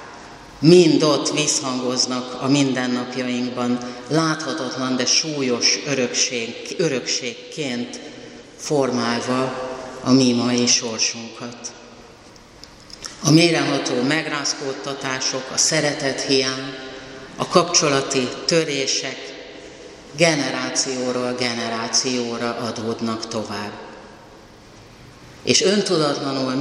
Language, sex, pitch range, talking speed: Hungarian, female, 125-140 Hz, 70 wpm